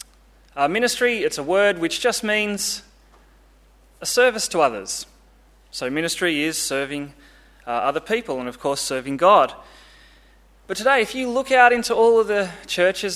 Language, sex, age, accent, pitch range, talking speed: English, male, 20-39, Australian, 165-240 Hz, 160 wpm